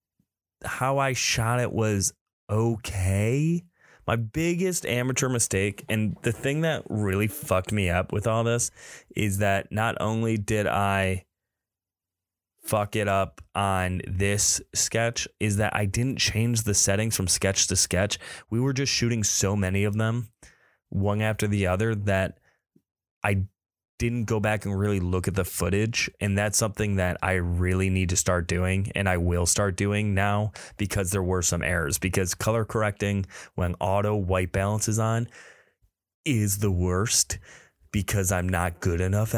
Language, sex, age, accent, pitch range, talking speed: English, male, 20-39, American, 95-110 Hz, 160 wpm